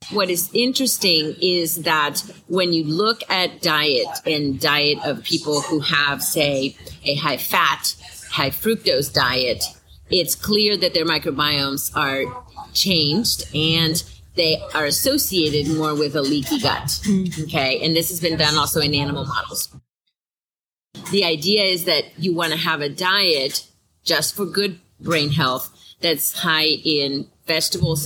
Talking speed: 145 wpm